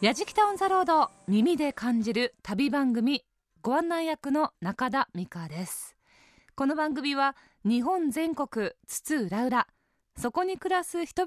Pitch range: 215-310 Hz